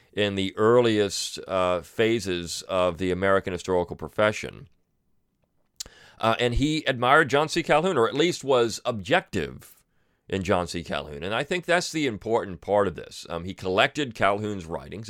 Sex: male